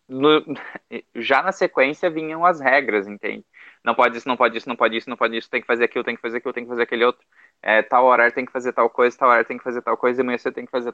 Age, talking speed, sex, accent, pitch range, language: 20-39, 290 wpm, male, Brazilian, 120-150 Hz, Portuguese